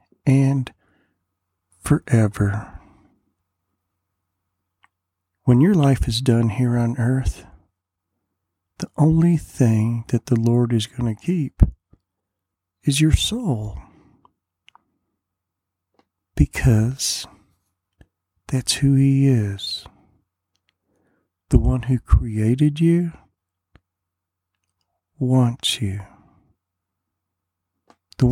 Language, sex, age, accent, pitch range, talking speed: English, male, 50-69, American, 90-125 Hz, 75 wpm